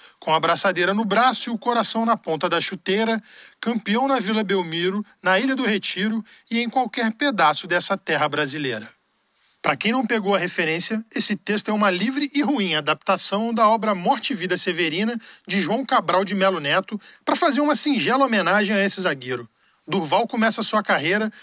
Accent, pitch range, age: Brazilian, 185-225 Hz, 40-59